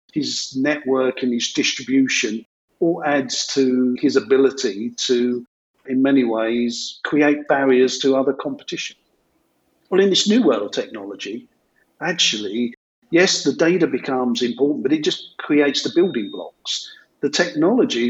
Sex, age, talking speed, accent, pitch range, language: male, 50-69, 135 wpm, British, 115-150 Hz, English